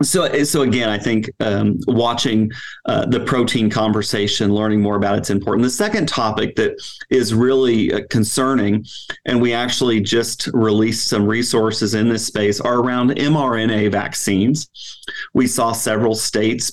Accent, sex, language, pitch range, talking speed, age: American, male, English, 105-125 Hz, 145 wpm, 40-59